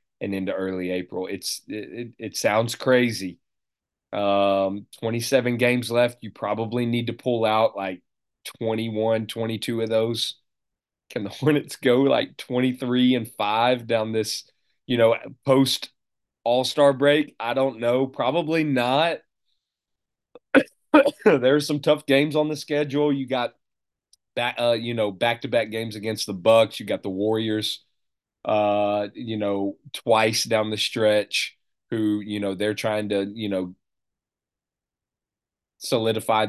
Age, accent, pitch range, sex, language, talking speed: 30-49, American, 105-135 Hz, male, English, 140 wpm